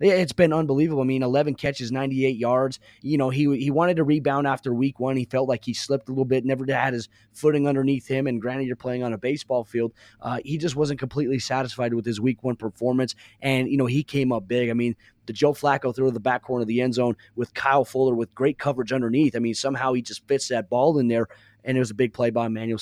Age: 20-39